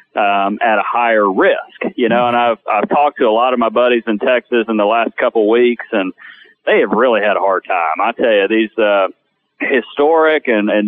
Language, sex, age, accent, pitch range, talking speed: English, male, 40-59, American, 110-135 Hz, 220 wpm